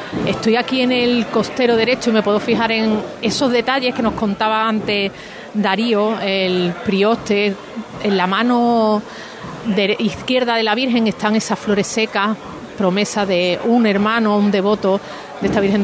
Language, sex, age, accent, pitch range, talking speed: Spanish, female, 40-59, Spanish, 200-230 Hz, 150 wpm